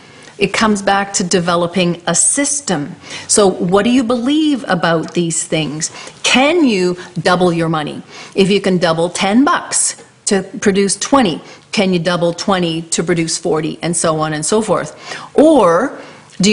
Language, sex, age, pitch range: English, female, 40-59, 170-200 Hz